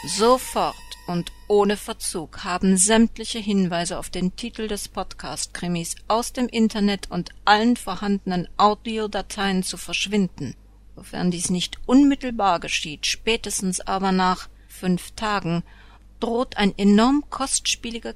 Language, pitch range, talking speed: German, 150-205 Hz, 115 wpm